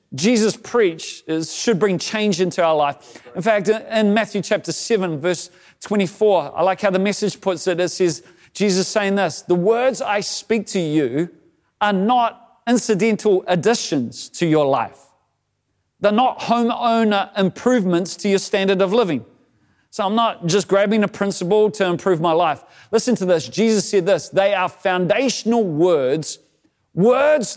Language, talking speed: English, 155 wpm